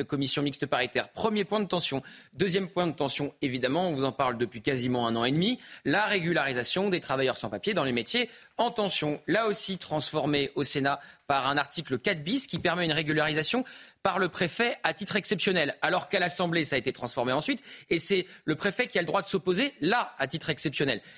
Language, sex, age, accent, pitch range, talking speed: French, male, 30-49, French, 145-200 Hz, 215 wpm